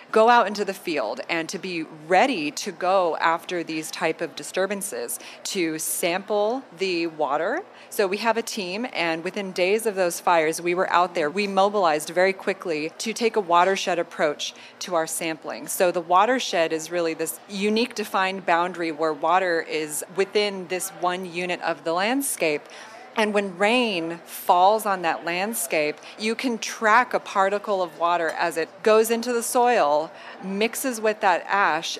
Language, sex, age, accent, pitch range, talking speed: English, female, 30-49, American, 170-215 Hz, 170 wpm